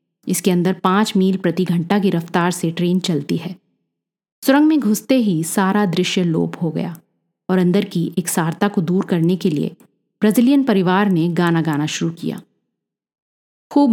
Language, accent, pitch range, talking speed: Hindi, native, 175-215 Hz, 170 wpm